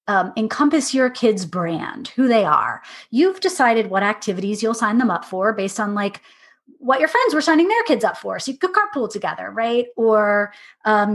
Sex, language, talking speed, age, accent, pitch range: female, English, 200 wpm, 30-49, American, 200-260 Hz